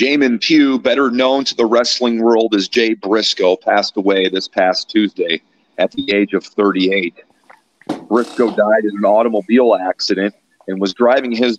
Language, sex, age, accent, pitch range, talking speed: English, male, 40-59, American, 100-115 Hz, 160 wpm